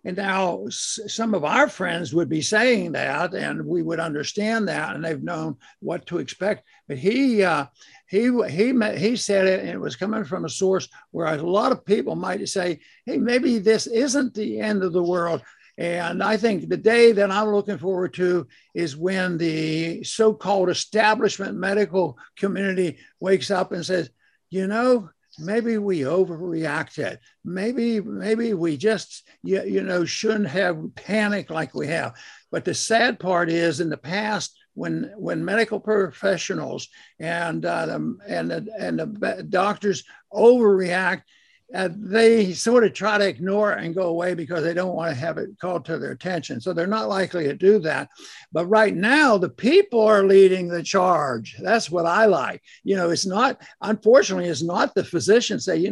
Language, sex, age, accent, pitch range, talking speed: English, male, 60-79, American, 180-220 Hz, 175 wpm